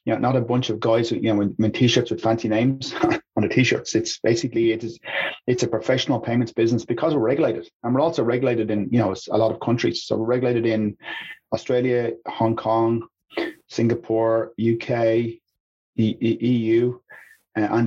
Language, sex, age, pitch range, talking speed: English, male, 30-49, 110-125 Hz, 190 wpm